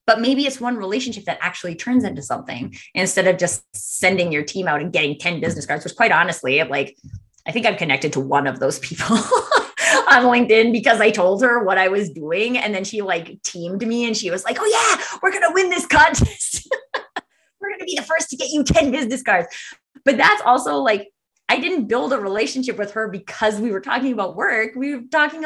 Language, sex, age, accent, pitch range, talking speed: English, female, 20-39, American, 190-295 Hz, 220 wpm